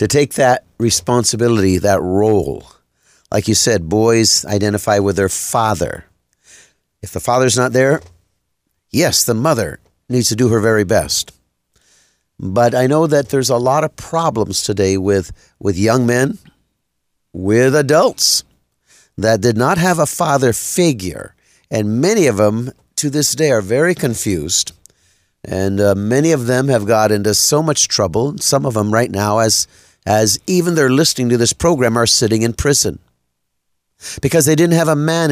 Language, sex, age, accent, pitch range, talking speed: English, male, 50-69, American, 105-145 Hz, 160 wpm